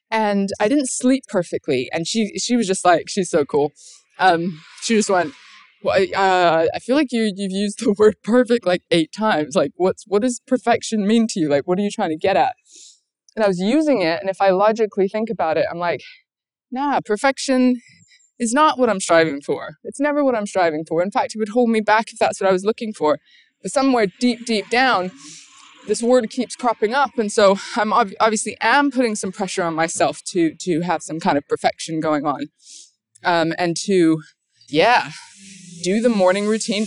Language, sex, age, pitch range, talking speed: English, female, 20-39, 175-235 Hz, 210 wpm